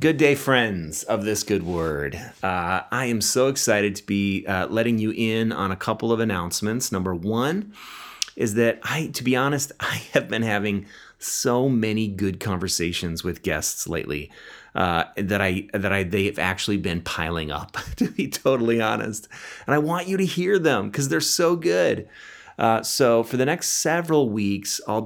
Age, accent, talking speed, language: 30-49, American, 180 wpm, English